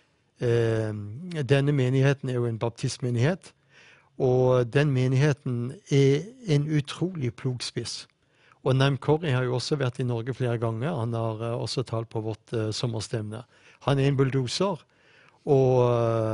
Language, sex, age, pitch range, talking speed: English, male, 60-79, 120-145 Hz, 135 wpm